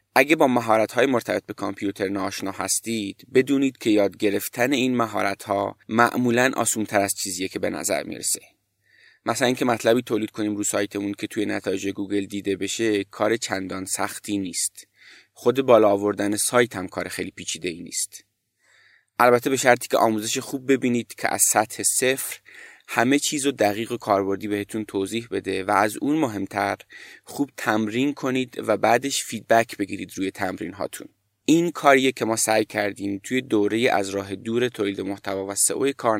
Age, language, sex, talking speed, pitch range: 30-49, Persian, male, 165 wpm, 100-125 Hz